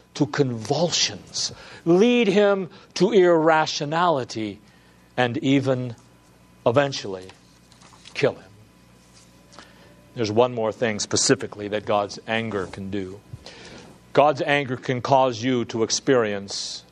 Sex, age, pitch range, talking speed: male, 60-79, 95-145 Hz, 100 wpm